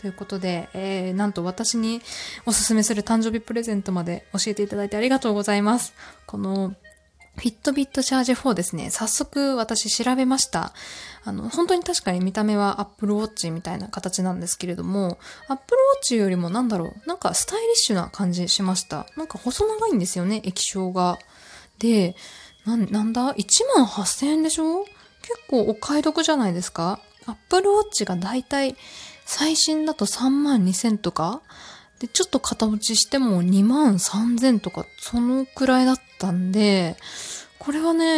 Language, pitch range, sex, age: Japanese, 190-260 Hz, female, 20-39